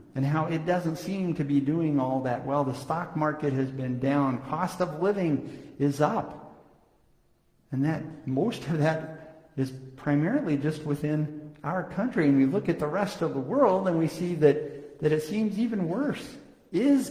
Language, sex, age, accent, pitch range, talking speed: English, male, 50-69, American, 130-160 Hz, 180 wpm